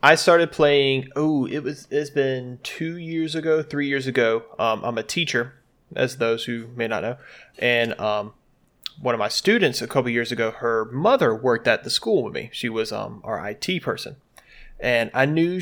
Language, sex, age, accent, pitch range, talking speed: English, male, 20-39, American, 115-140 Hz, 195 wpm